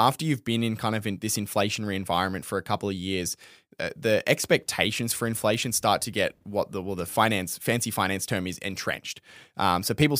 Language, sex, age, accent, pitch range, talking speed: English, male, 10-29, Australian, 95-115 Hz, 205 wpm